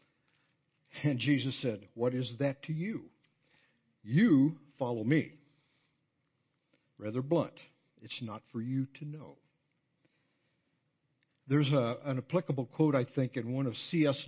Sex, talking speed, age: male, 120 wpm, 60-79